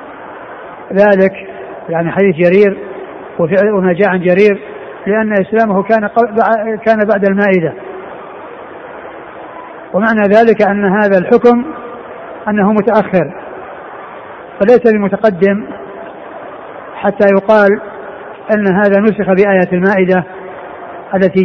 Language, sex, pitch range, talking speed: Arabic, male, 190-220 Hz, 85 wpm